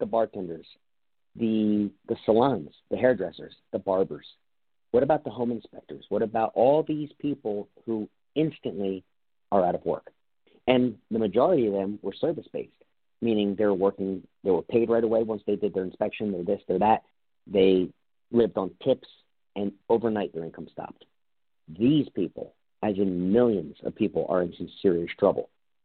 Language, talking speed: English, 160 wpm